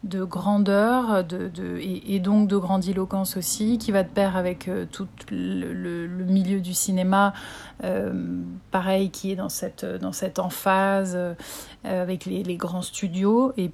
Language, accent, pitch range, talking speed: French, French, 180-205 Hz, 150 wpm